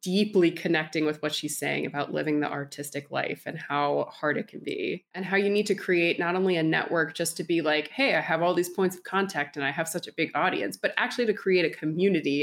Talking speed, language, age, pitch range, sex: 250 wpm, English, 20-39, 155-190 Hz, female